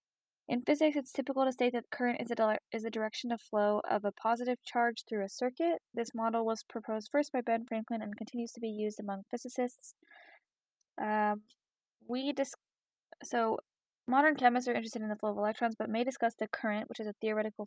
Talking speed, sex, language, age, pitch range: 195 wpm, female, English, 10-29, 210-245 Hz